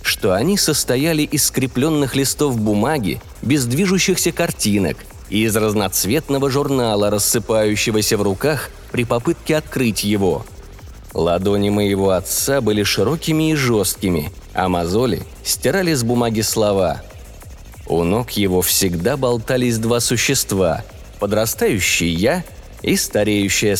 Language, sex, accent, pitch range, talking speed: Russian, male, native, 100-145 Hz, 115 wpm